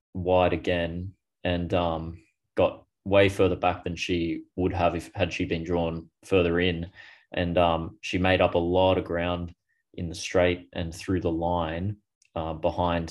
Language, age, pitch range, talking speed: English, 20-39, 85-90 Hz, 170 wpm